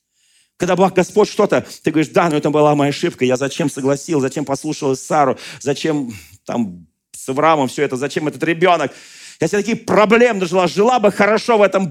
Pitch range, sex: 125-185 Hz, male